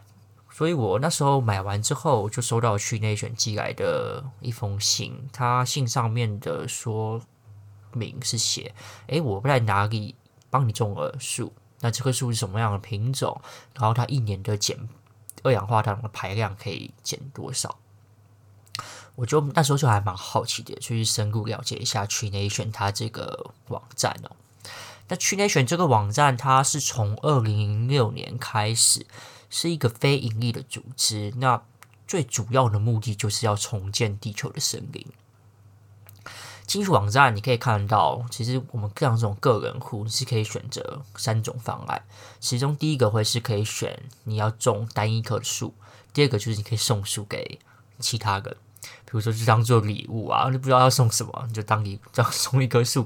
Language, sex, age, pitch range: Chinese, male, 20-39, 105-130 Hz